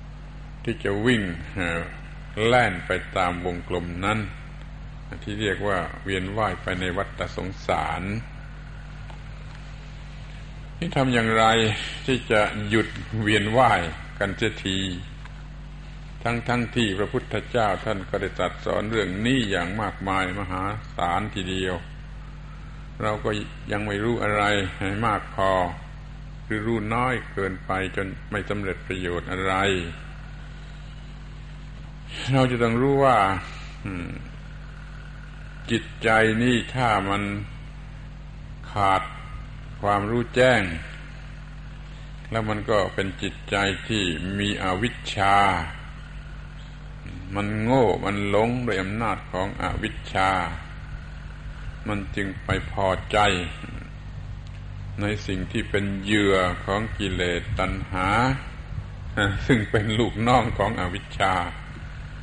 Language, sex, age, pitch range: Thai, male, 60-79, 95-140 Hz